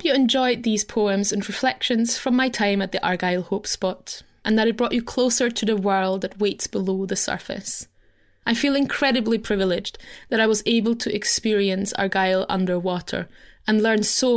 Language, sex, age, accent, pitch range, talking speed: English, female, 20-39, British, 195-245 Hz, 180 wpm